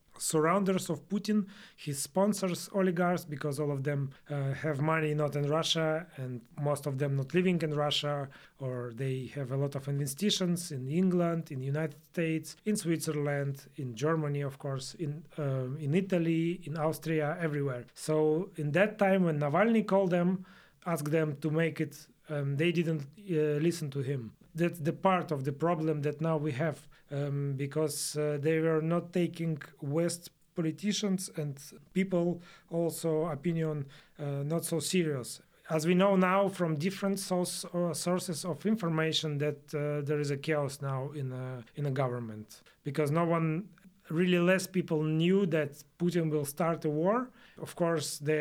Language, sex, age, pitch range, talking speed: German, male, 30-49, 140-170 Hz, 165 wpm